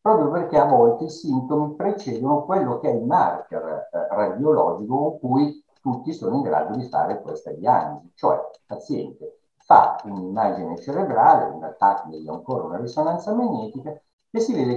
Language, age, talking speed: Italian, 60-79, 165 wpm